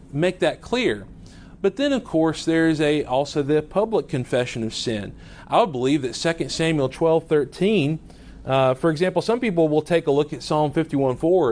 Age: 40-59